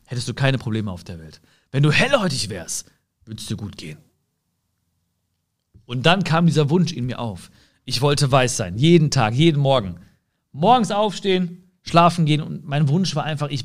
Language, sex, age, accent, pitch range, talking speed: German, male, 40-59, German, 125-195 Hz, 180 wpm